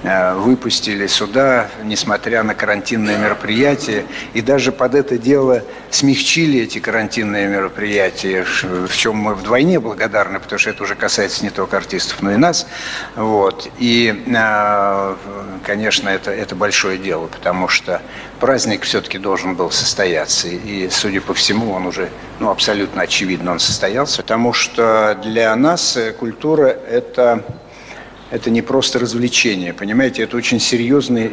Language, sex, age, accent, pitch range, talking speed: Russian, male, 60-79, native, 105-130 Hz, 130 wpm